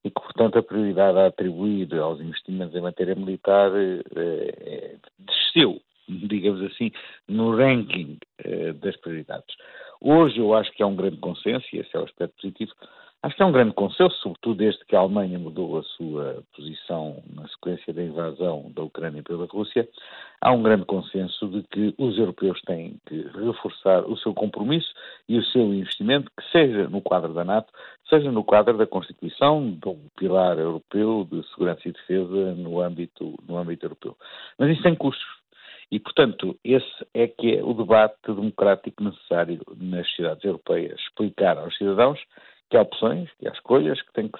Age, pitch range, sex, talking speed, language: 60-79, 90-120 Hz, male, 170 wpm, Portuguese